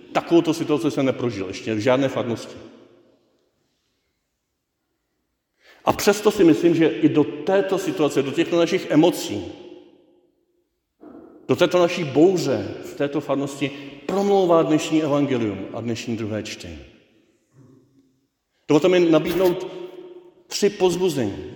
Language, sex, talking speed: Czech, male, 110 wpm